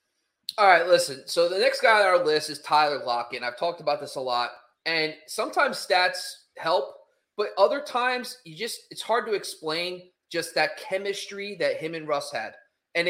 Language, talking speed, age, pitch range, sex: English, 190 wpm, 30-49, 145-200 Hz, male